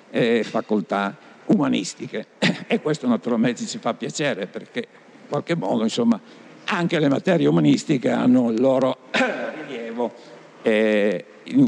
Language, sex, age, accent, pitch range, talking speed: Italian, male, 60-79, native, 105-165 Hz, 120 wpm